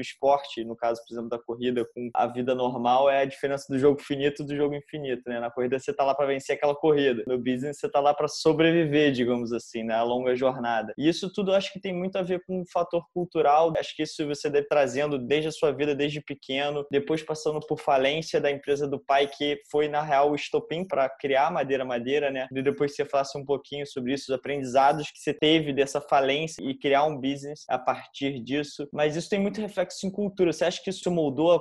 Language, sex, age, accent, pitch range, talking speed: Portuguese, male, 20-39, Brazilian, 130-150 Hz, 235 wpm